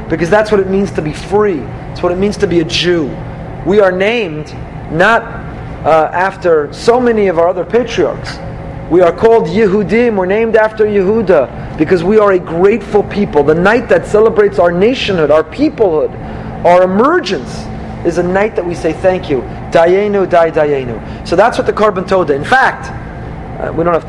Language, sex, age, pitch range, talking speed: English, male, 30-49, 170-230 Hz, 185 wpm